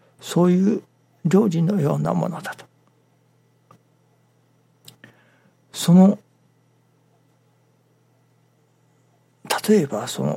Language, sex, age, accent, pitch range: Japanese, male, 60-79, native, 140-190 Hz